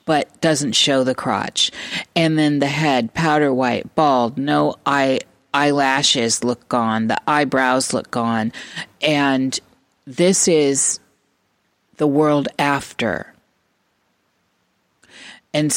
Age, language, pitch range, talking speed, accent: 40-59, English, 130-160 Hz, 105 wpm, American